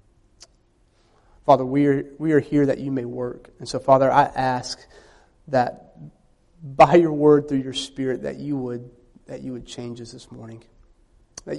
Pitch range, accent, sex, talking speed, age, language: 125-180 Hz, American, male, 170 wpm, 30-49, English